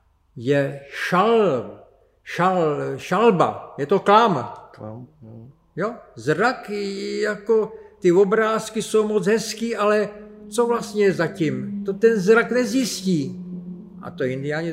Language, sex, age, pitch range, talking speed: Czech, male, 60-79, 140-180 Hz, 105 wpm